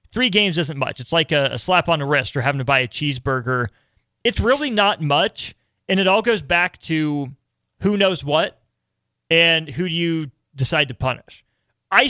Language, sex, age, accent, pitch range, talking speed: English, male, 30-49, American, 140-175 Hz, 195 wpm